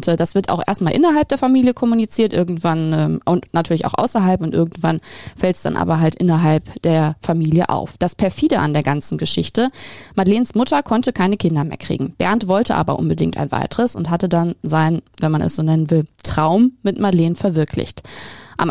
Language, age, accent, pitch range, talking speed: German, 20-39, German, 165-225 Hz, 190 wpm